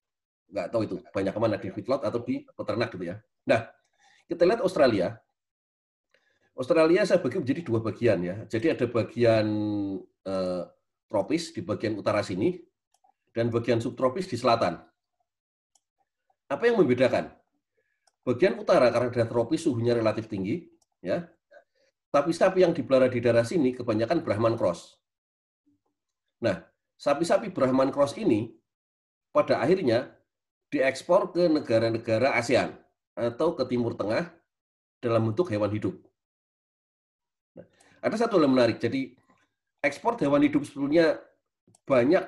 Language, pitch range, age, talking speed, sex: Indonesian, 110-155 Hz, 30-49, 130 wpm, male